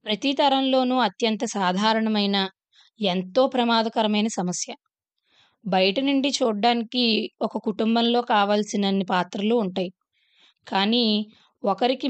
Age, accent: 20-39, native